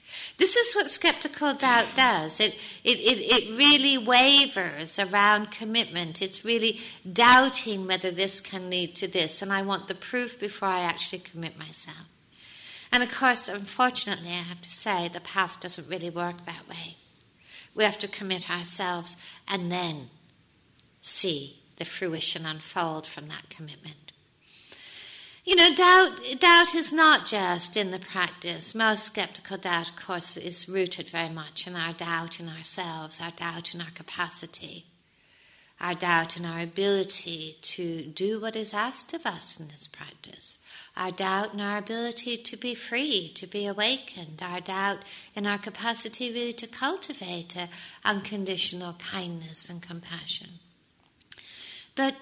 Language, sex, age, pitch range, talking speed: English, female, 50-69, 170-220 Hz, 150 wpm